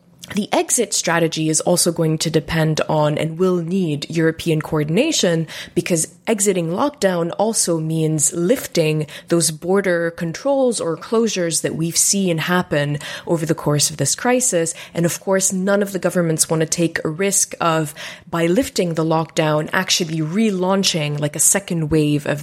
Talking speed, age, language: 160 wpm, 20-39, English